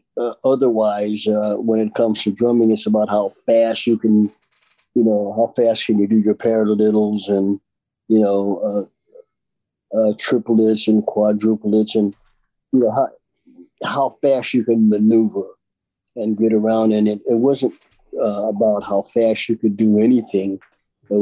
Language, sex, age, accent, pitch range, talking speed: English, male, 50-69, American, 105-125 Hz, 160 wpm